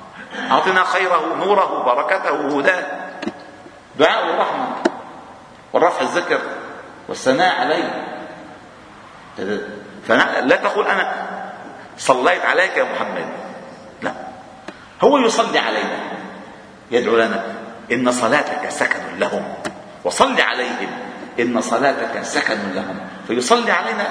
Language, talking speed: Arabic, 90 wpm